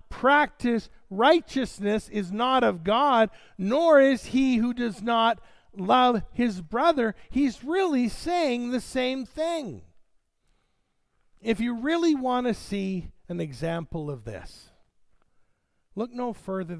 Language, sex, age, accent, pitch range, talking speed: English, male, 50-69, American, 175-250 Hz, 120 wpm